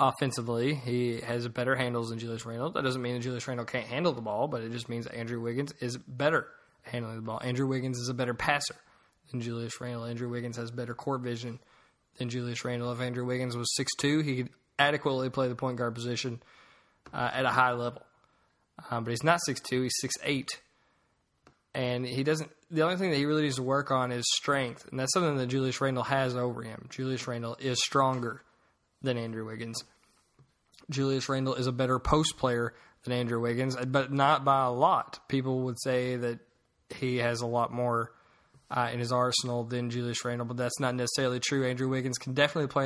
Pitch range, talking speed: 120-135 Hz, 205 wpm